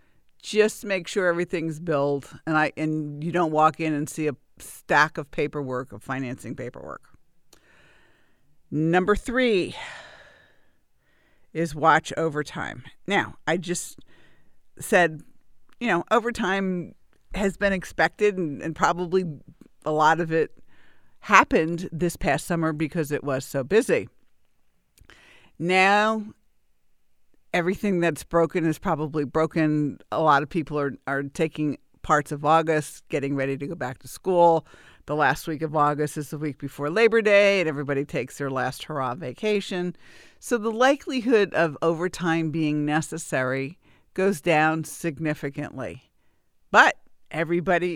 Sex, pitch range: female, 150-190 Hz